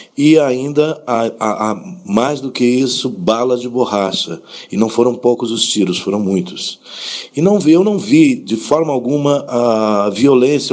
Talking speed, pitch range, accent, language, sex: 160 wpm, 105-135 Hz, Brazilian, Portuguese, male